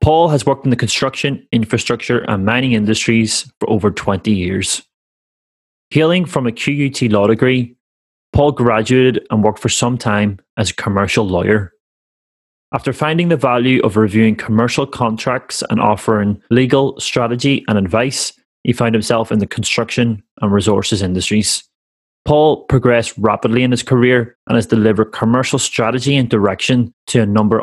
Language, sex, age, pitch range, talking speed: English, male, 20-39, 105-125 Hz, 150 wpm